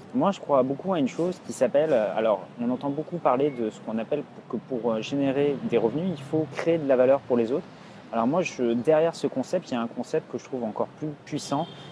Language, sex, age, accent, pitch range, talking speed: French, male, 30-49, French, 120-155 Hz, 240 wpm